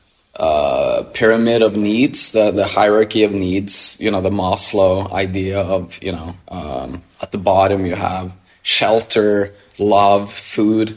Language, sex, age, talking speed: English, male, 20-39, 140 wpm